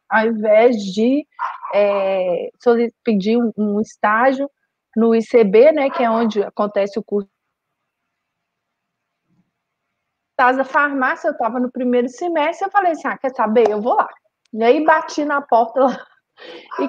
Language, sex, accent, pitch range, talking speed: Portuguese, female, Brazilian, 225-295 Hz, 140 wpm